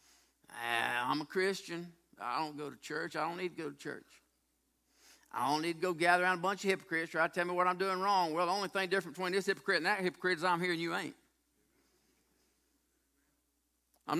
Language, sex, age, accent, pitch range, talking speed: English, male, 50-69, American, 180-265 Hz, 225 wpm